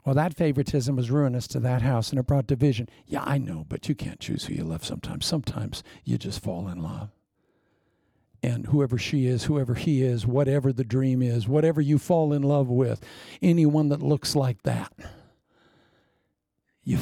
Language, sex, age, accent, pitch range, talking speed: English, male, 60-79, American, 125-180 Hz, 185 wpm